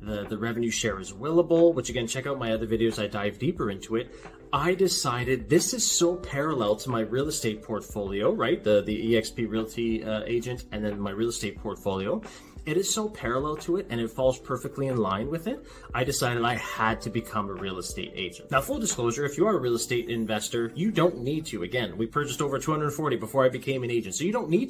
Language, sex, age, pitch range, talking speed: English, male, 30-49, 115-155 Hz, 230 wpm